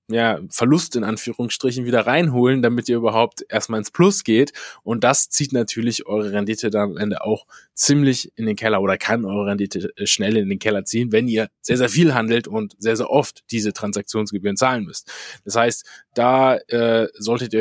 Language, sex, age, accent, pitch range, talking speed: German, male, 20-39, German, 100-115 Hz, 190 wpm